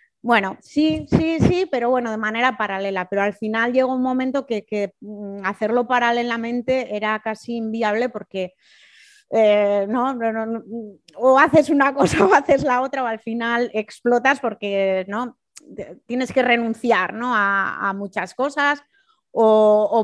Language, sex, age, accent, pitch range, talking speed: Spanish, female, 30-49, Spanish, 205-250 Hz, 145 wpm